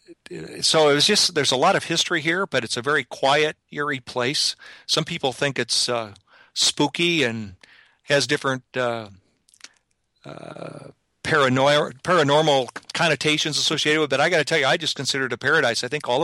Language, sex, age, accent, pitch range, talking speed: English, male, 50-69, American, 120-150 Hz, 175 wpm